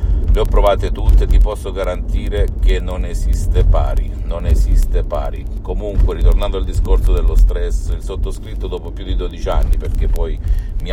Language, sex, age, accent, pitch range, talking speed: Italian, male, 50-69, native, 80-100 Hz, 165 wpm